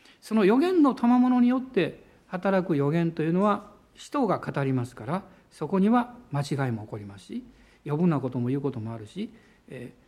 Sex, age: male, 60-79